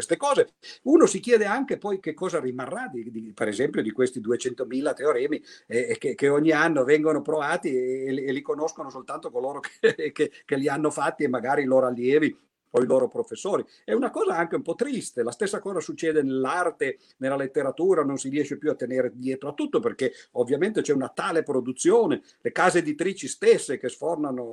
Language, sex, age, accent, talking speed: Italian, male, 50-69, native, 200 wpm